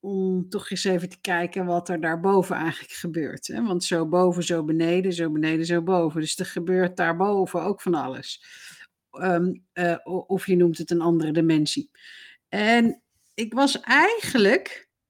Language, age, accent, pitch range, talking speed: Dutch, 50-69, Dutch, 170-205 Hz, 150 wpm